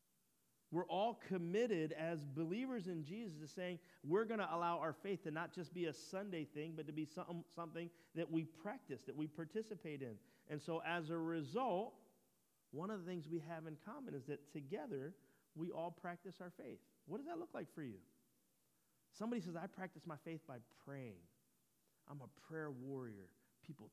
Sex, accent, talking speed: male, American, 185 wpm